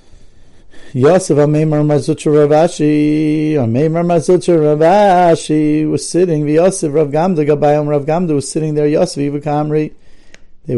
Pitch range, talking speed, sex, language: 125-165 Hz, 95 wpm, male, English